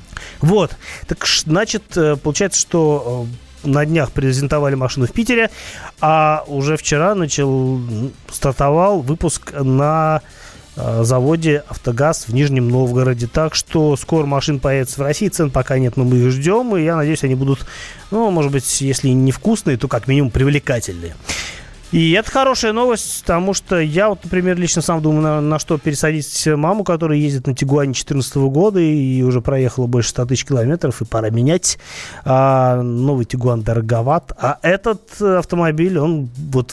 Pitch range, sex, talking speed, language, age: 130-165 Hz, male, 155 wpm, Russian, 30-49